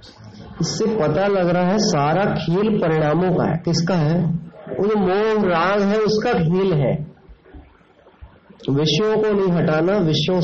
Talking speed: 140 wpm